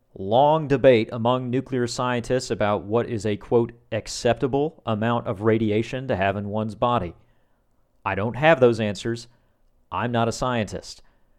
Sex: male